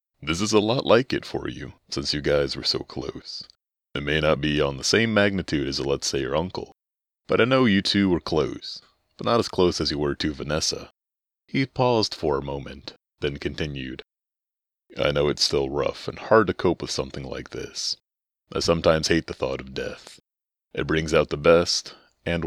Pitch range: 70-105 Hz